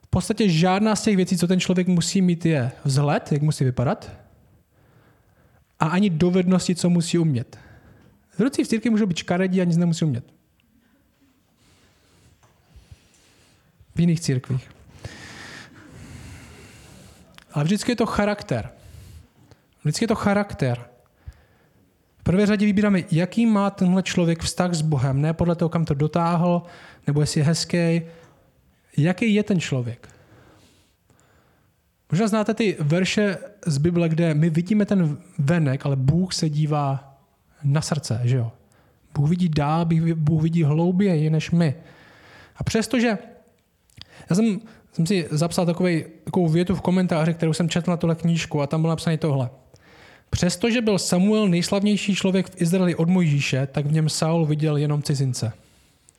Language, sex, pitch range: Czech, male, 145-185 Hz